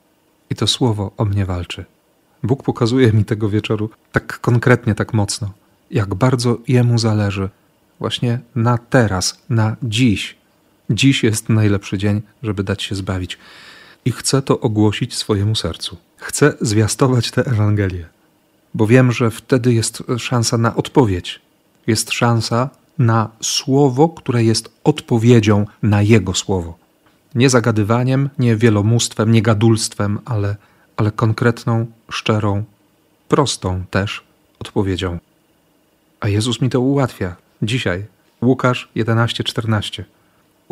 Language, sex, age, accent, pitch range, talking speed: Polish, male, 40-59, native, 105-125 Hz, 120 wpm